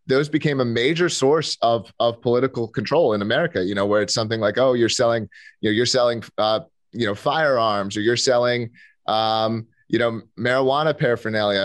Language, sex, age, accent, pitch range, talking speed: English, male, 30-49, American, 105-125 Hz, 185 wpm